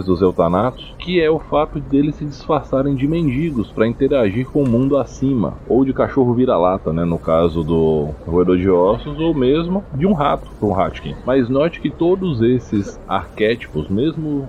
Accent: Brazilian